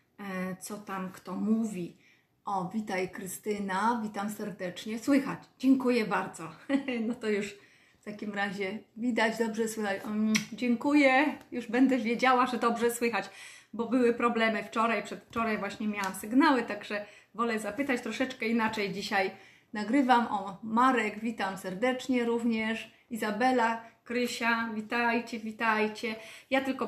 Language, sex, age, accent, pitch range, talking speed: Polish, female, 30-49, native, 205-245 Hz, 125 wpm